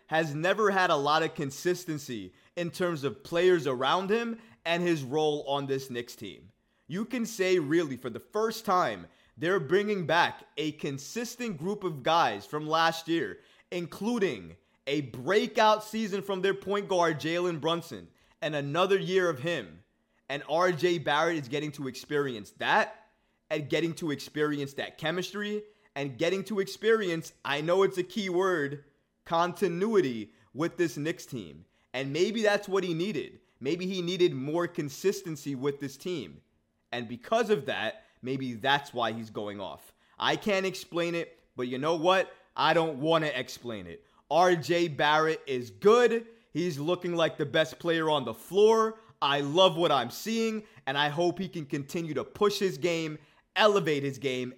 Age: 20-39